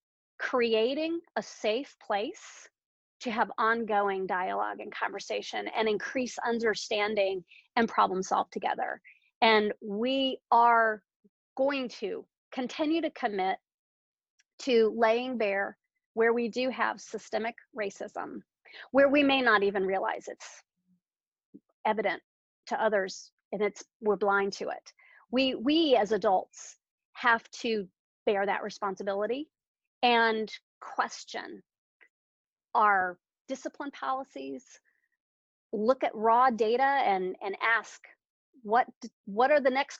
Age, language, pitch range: 40-59, English, 205-265 Hz